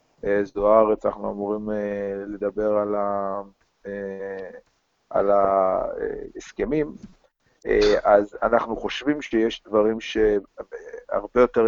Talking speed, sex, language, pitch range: 75 wpm, male, Hebrew, 100-115 Hz